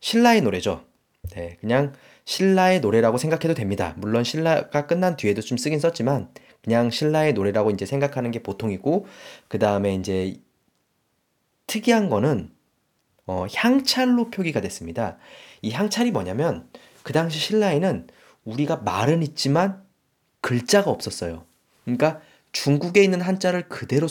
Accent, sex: native, male